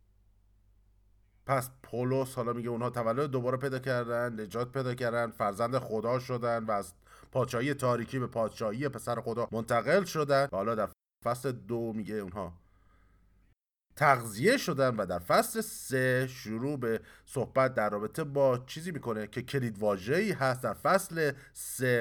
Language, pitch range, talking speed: Persian, 105-135 Hz, 140 wpm